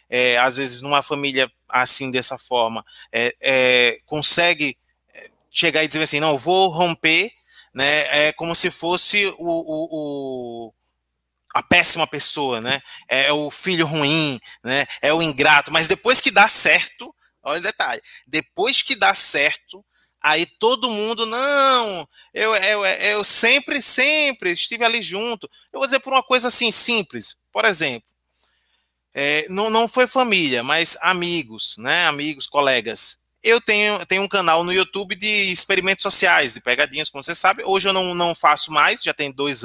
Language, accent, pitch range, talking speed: Portuguese, Brazilian, 150-215 Hz, 160 wpm